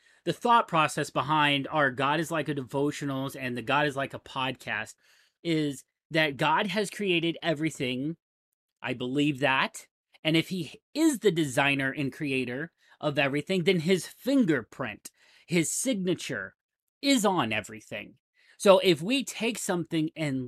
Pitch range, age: 140-195 Hz, 30-49